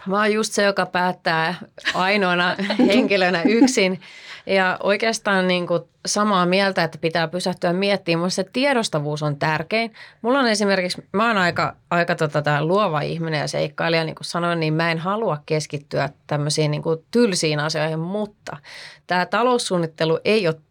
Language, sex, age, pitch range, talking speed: Finnish, female, 30-49, 160-200 Hz, 155 wpm